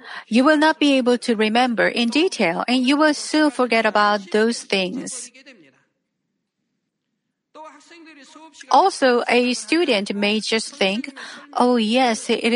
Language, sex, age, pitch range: Korean, female, 40-59, 215-280 Hz